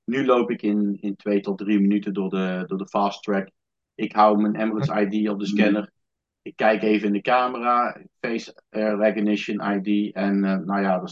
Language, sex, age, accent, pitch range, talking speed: Dutch, male, 50-69, Dutch, 105-115 Hz, 200 wpm